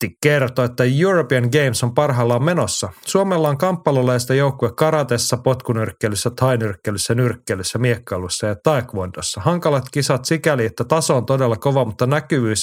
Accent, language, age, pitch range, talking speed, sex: native, Finnish, 30-49, 110-135 Hz, 135 wpm, male